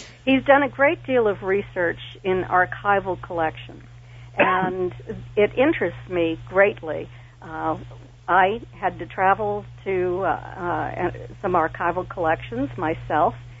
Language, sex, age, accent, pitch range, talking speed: English, female, 60-79, American, 135-195 Hz, 120 wpm